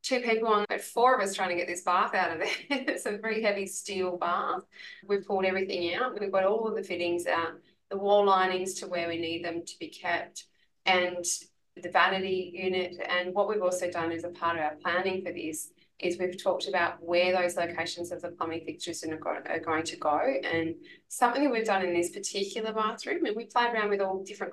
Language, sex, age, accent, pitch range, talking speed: English, female, 20-39, Australian, 170-205 Hz, 225 wpm